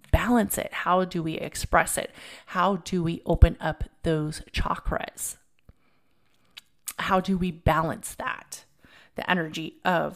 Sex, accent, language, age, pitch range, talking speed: female, American, English, 30-49, 165-215 Hz, 130 wpm